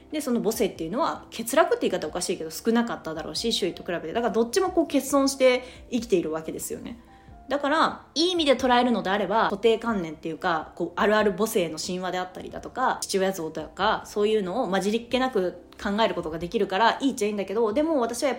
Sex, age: female, 20-39